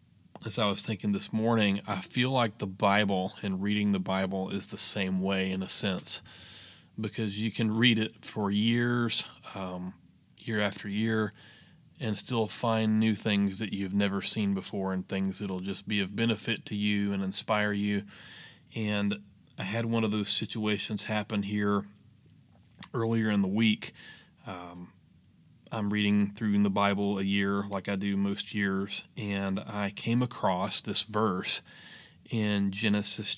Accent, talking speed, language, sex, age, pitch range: American, 160 wpm, English, male, 30-49, 100-115 Hz